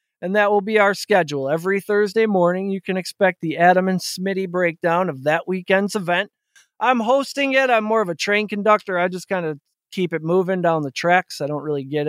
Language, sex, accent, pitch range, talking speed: English, male, American, 165-210 Hz, 220 wpm